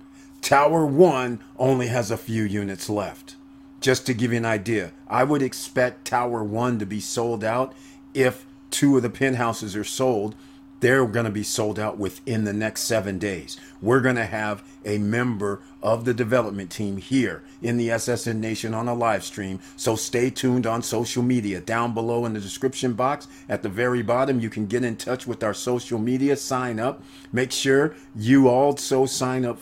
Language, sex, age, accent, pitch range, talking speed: English, male, 40-59, American, 100-130 Hz, 190 wpm